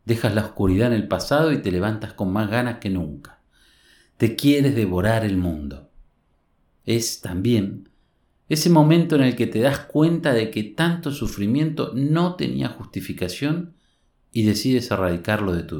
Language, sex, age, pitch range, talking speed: Spanish, male, 50-69, 95-140 Hz, 155 wpm